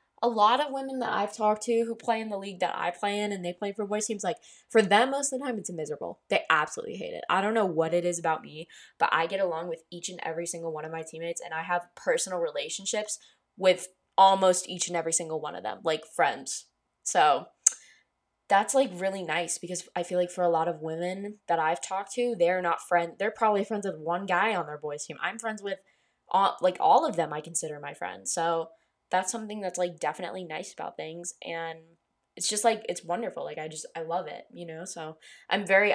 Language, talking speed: English, 235 wpm